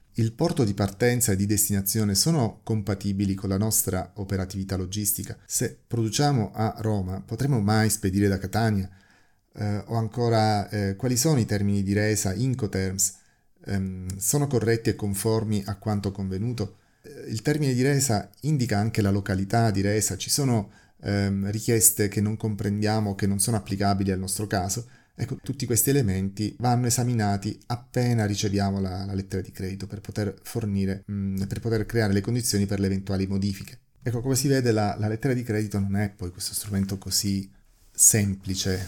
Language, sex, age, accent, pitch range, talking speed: Italian, male, 30-49, native, 100-110 Hz, 170 wpm